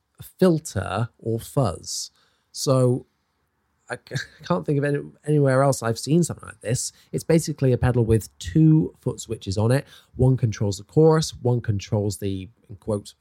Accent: British